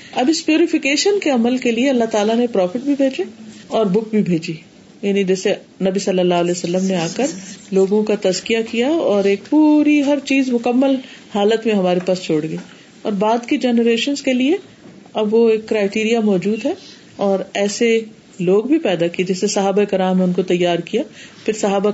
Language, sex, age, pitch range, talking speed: Urdu, female, 40-59, 195-265 Hz, 190 wpm